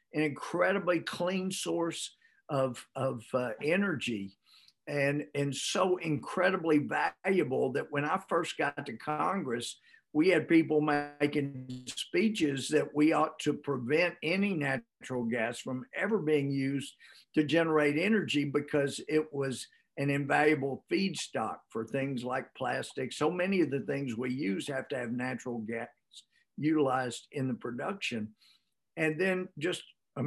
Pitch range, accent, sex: 130-155 Hz, American, male